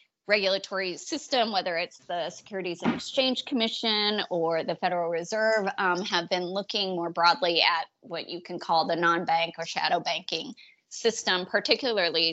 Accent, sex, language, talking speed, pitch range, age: American, female, English, 155 wpm, 165-195 Hz, 20-39